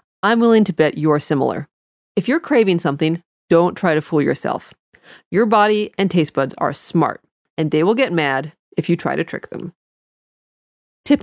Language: English